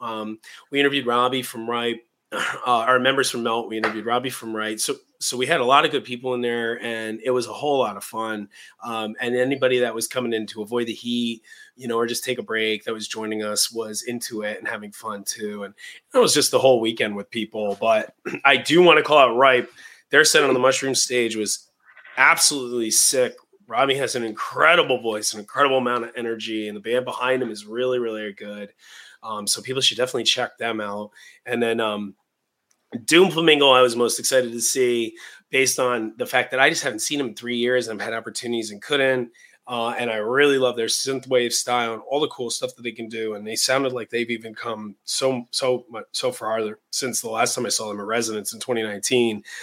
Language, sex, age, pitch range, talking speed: English, male, 30-49, 110-125 Hz, 225 wpm